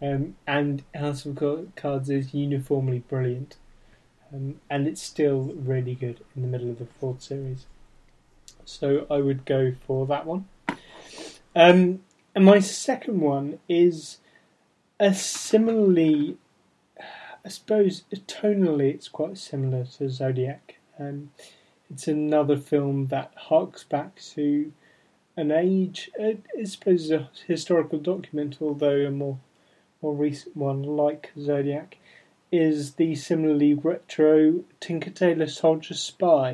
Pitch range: 140-170 Hz